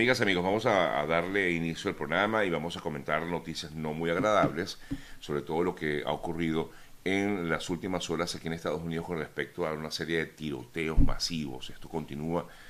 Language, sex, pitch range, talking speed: Spanish, male, 75-85 Hz, 190 wpm